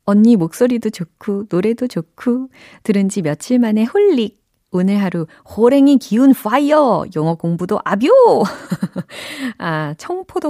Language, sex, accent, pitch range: Korean, female, native, 160-240 Hz